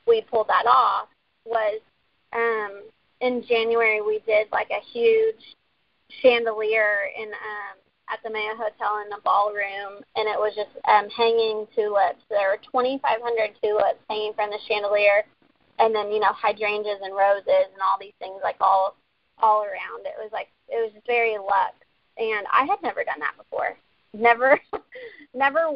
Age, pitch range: 30-49, 210-245 Hz